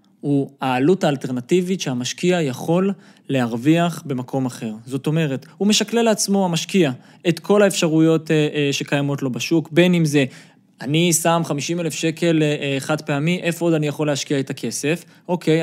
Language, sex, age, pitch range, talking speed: Hebrew, male, 20-39, 145-180 Hz, 150 wpm